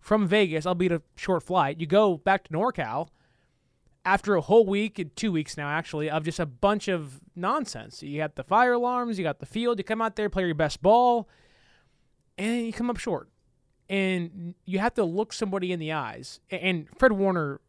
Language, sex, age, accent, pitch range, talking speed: English, male, 20-39, American, 150-205 Hz, 205 wpm